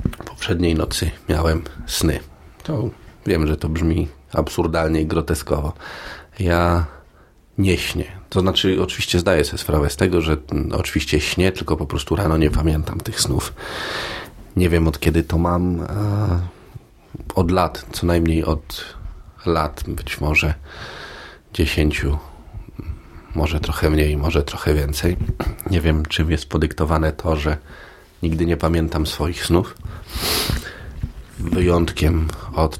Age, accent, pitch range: 40-59, native, 75-90 Hz